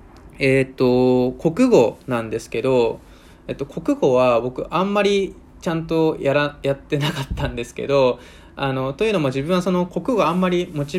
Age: 20-39